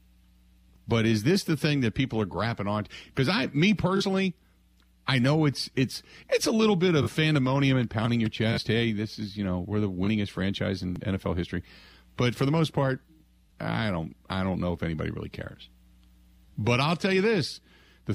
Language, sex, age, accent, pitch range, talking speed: English, male, 40-59, American, 85-135 Hz, 200 wpm